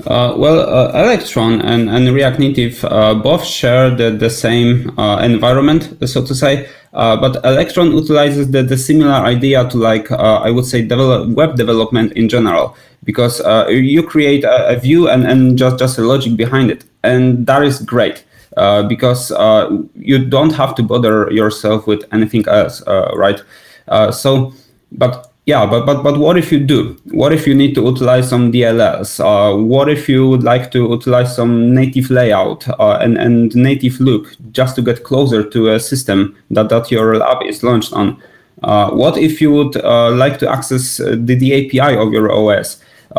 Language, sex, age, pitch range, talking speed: English, male, 20-39, 115-140 Hz, 190 wpm